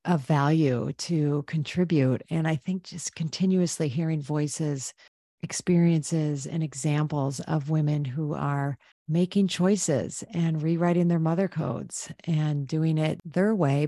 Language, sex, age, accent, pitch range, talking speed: English, female, 40-59, American, 145-170 Hz, 130 wpm